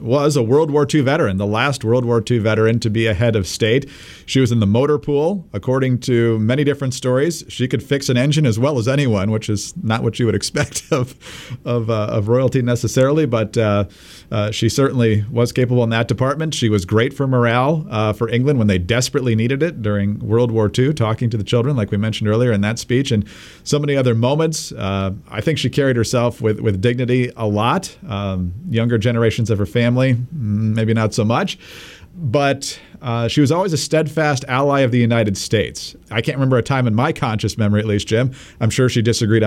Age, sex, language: 40-59, male, English